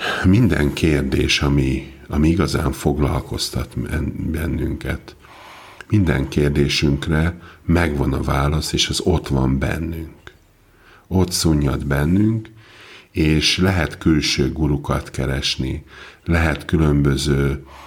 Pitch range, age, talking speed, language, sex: 70-85 Hz, 50-69, 90 wpm, Hungarian, male